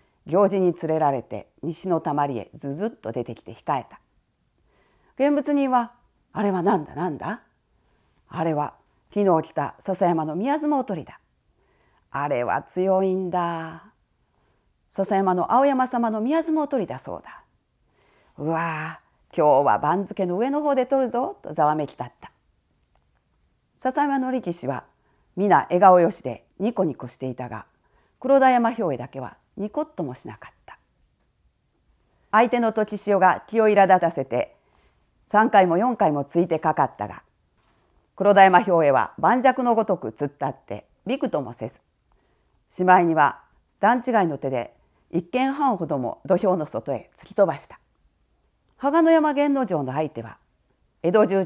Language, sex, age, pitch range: Japanese, female, 40-59, 150-235 Hz